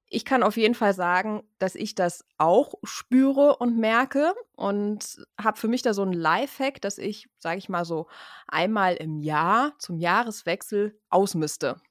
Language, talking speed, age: German, 165 wpm, 20-39